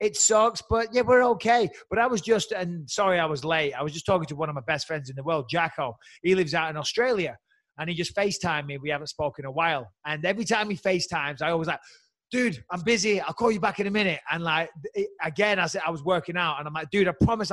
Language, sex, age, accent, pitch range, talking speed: English, male, 30-49, British, 155-190 Hz, 270 wpm